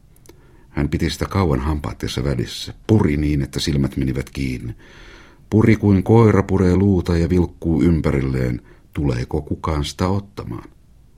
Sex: male